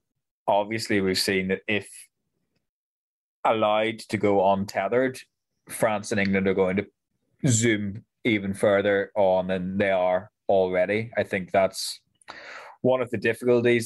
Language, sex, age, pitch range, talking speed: English, male, 20-39, 95-115 Hz, 130 wpm